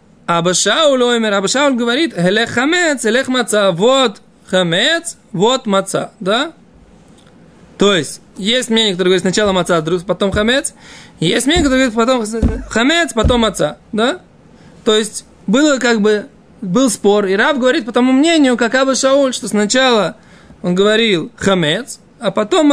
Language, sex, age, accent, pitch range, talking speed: Russian, male, 20-39, native, 190-245 Hz, 150 wpm